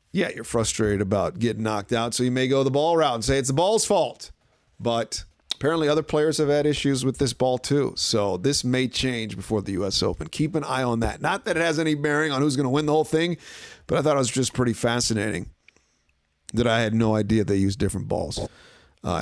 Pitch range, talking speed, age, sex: 105-135 Hz, 235 wpm, 40-59, male